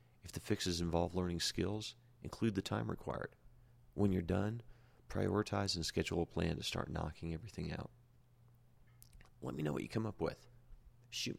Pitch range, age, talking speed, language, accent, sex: 85-120 Hz, 40-59, 170 wpm, English, American, male